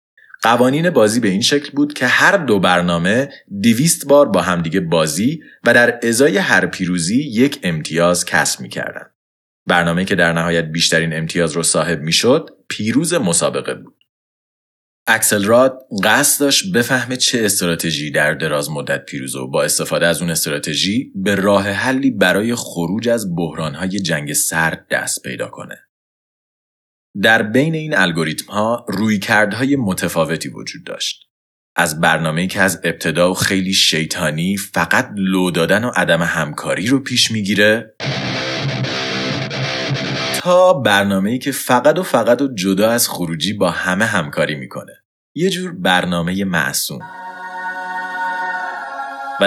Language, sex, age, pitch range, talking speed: Persian, male, 30-49, 85-130 Hz, 130 wpm